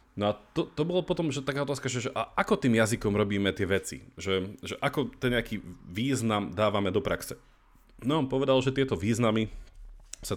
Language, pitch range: Slovak, 95-125 Hz